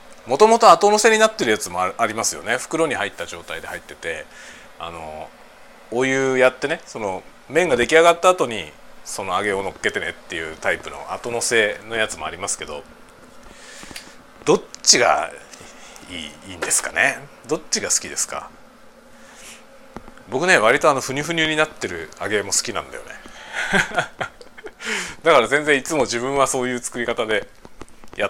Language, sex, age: Japanese, male, 40-59